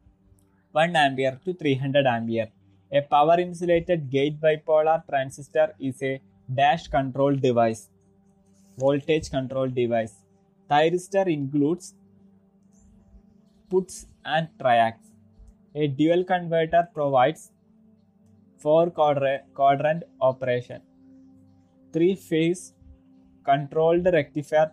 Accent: native